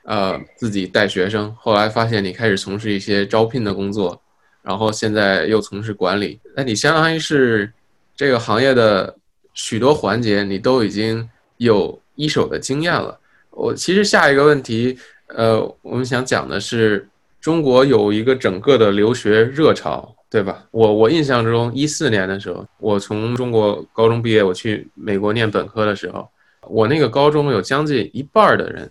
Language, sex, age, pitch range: English, male, 20-39, 105-140 Hz